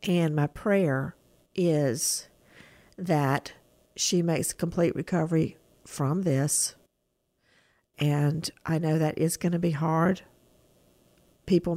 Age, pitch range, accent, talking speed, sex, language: 50-69, 160-180 Hz, American, 105 wpm, female, English